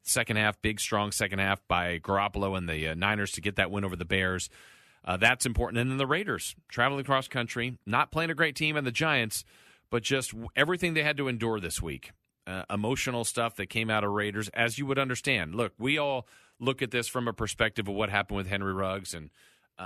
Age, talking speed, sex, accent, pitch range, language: 40-59, 225 wpm, male, American, 100-130 Hz, English